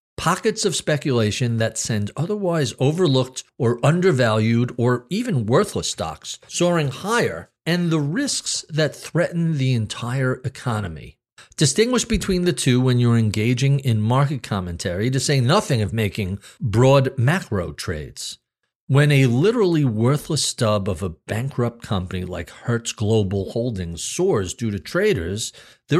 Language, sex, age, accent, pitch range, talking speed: English, male, 50-69, American, 110-150 Hz, 135 wpm